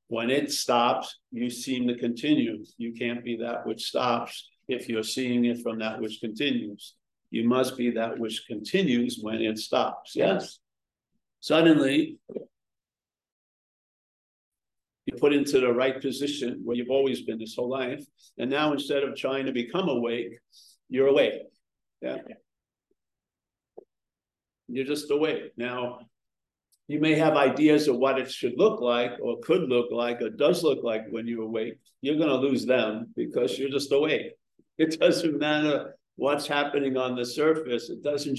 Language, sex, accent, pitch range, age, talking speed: English, male, American, 120-145 Hz, 50-69, 155 wpm